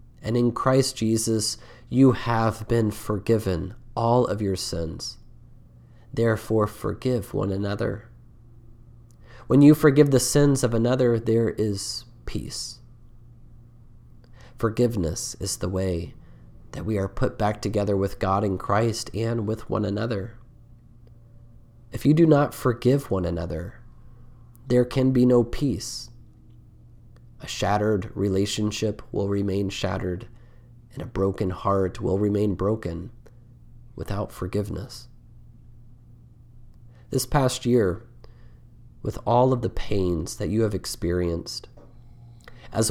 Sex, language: male, English